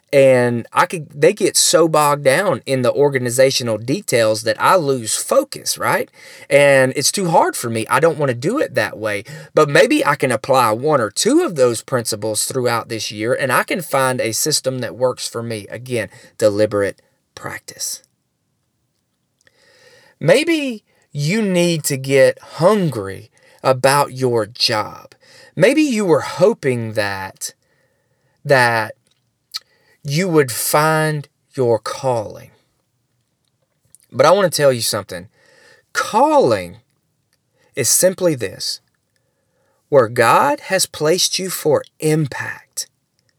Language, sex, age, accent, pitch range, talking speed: English, male, 20-39, American, 125-160 Hz, 135 wpm